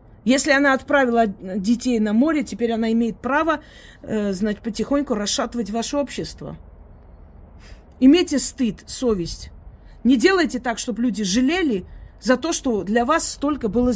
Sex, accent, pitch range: female, native, 205-280 Hz